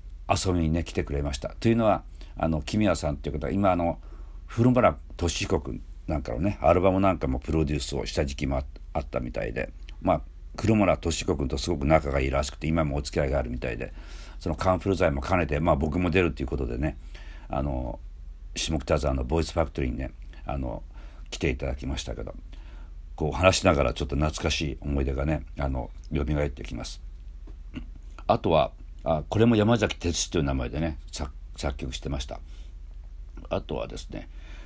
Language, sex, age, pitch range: Japanese, male, 50-69, 70-85 Hz